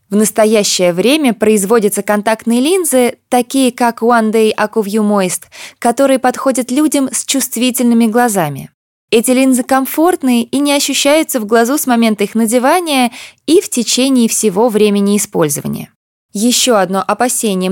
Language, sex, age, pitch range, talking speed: Russian, female, 20-39, 210-255 Hz, 130 wpm